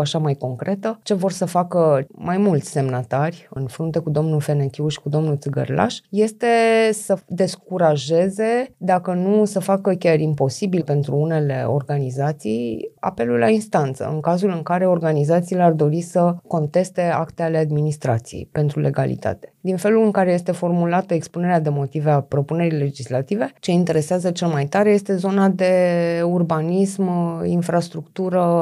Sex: female